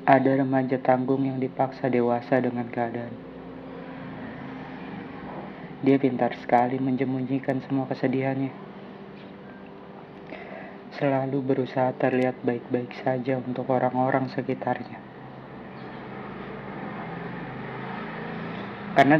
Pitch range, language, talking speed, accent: 100-130 Hz, Indonesian, 70 wpm, native